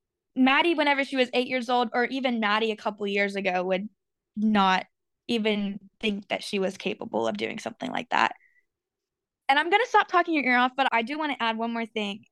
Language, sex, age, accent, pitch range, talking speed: English, female, 10-29, American, 215-260 Hz, 220 wpm